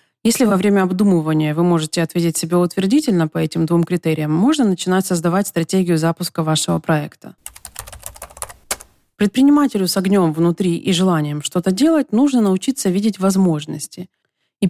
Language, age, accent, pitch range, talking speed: Russian, 30-49, native, 170-205 Hz, 135 wpm